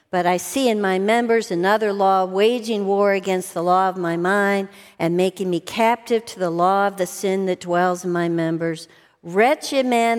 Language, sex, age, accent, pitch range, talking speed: English, female, 50-69, American, 185-245 Hz, 195 wpm